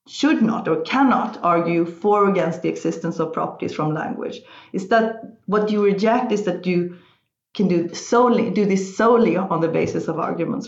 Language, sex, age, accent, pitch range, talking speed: English, female, 40-59, Swedish, 165-210 Hz, 185 wpm